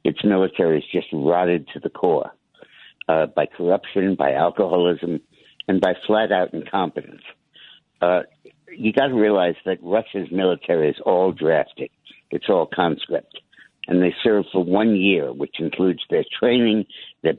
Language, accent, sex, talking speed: English, American, male, 145 wpm